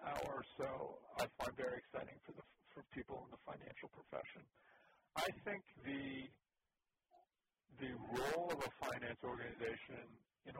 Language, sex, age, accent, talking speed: English, male, 50-69, American, 140 wpm